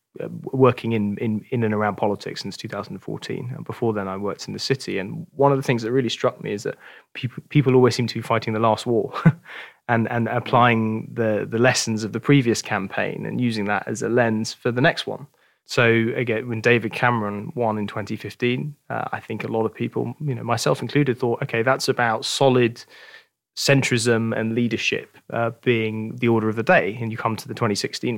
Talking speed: 210 wpm